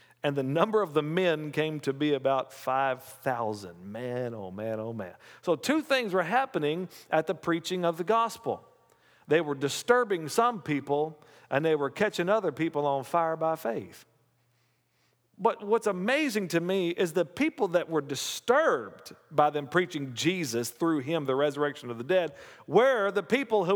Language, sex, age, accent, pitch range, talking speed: English, male, 50-69, American, 135-195 Hz, 170 wpm